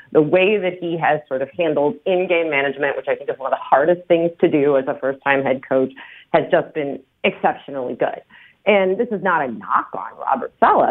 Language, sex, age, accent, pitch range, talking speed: English, female, 30-49, American, 150-225 Hz, 220 wpm